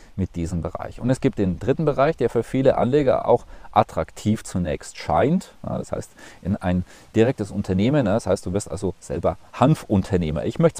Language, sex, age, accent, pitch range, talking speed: German, male, 40-59, German, 90-120 Hz, 190 wpm